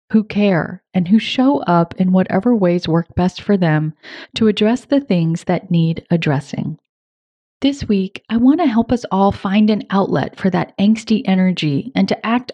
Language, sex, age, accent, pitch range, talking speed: English, female, 30-49, American, 180-230 Hz, 180 wpm